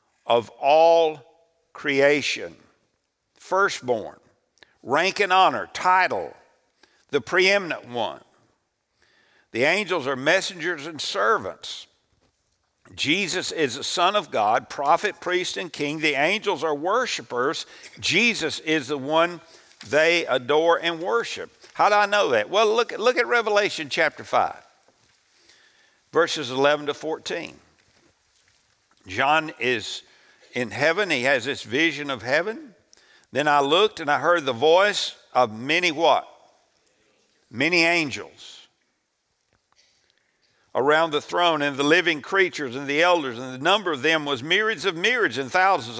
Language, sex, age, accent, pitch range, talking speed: English, male, 60-79, American, 145-185 Hz, 130 wpm